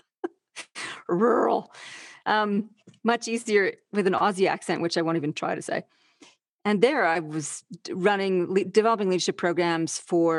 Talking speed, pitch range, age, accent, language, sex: 140 wpm, 170-215 Hz, 40-59, American, English, female